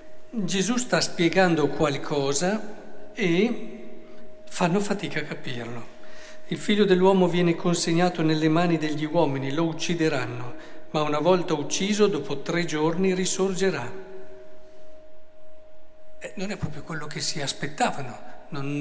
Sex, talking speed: male, 115 wpm